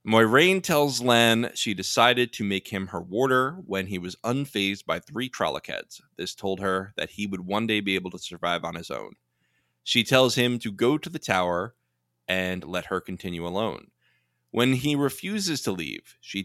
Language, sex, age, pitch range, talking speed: English, male, 20-39, 90-125 Hz, 185 wpm